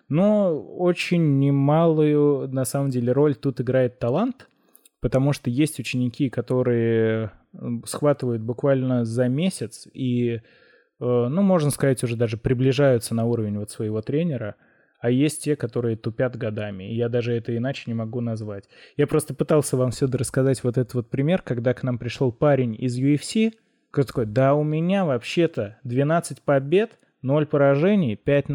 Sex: male